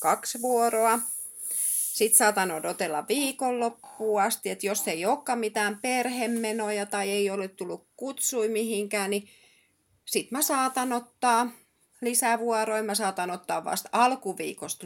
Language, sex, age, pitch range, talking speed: Finnish, female, 30-49, 170-230 Hz, 125 wpm